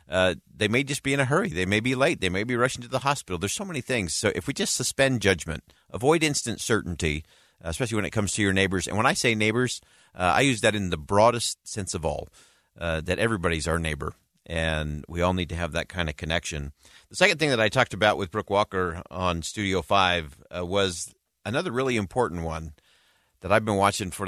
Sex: male